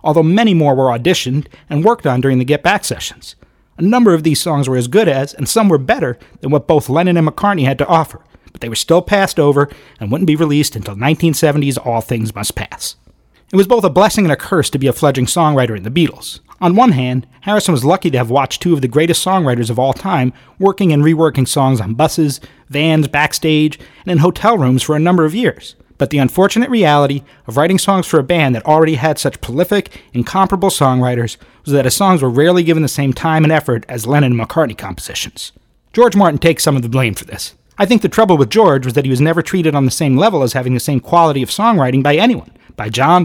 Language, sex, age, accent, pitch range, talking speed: English, male, 40-59, American, 130-175 Hz, 235 wpm